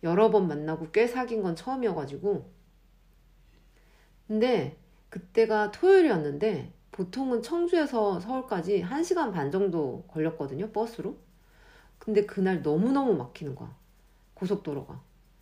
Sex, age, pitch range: female, 40-59, 165-235 Hz